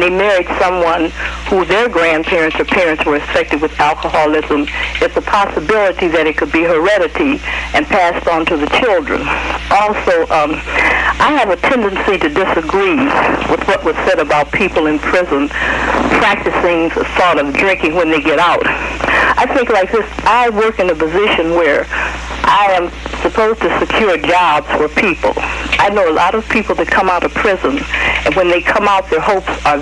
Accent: American